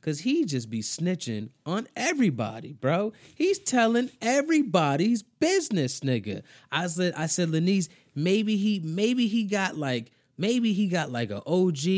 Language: English